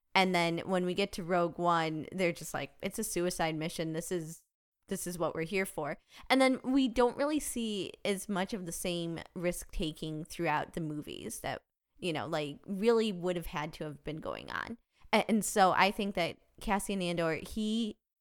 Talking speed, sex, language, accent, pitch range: 200 wpm, female, English, American, 160-190 Hz